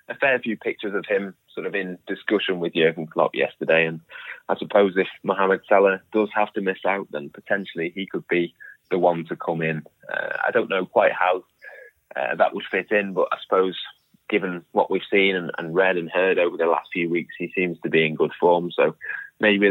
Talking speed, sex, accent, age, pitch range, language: 220 wpm, male, British, 20-39, 85-105 Hz, English